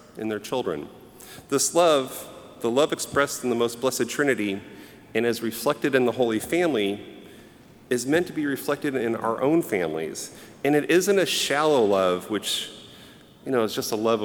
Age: 40-59